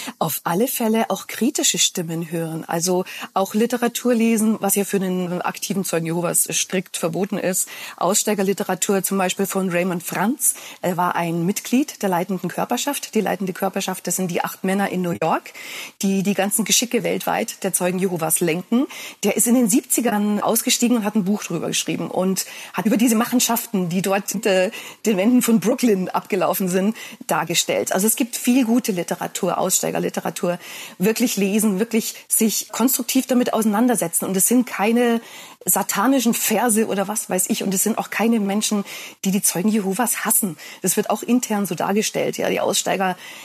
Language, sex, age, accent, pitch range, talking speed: German, female, 40-59, German, 185-230 Hz, 175 wpm